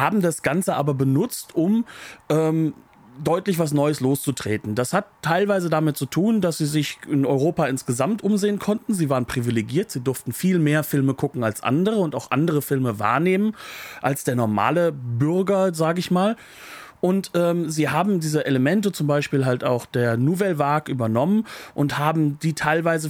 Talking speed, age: 170 wpm, 40-59